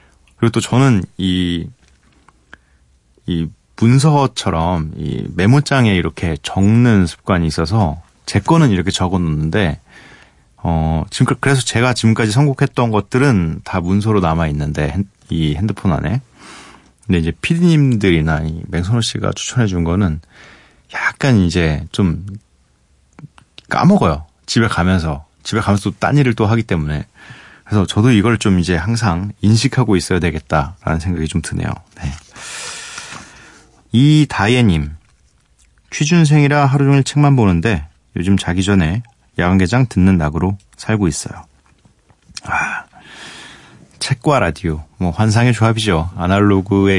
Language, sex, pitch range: Korean, male, 80-115 Hz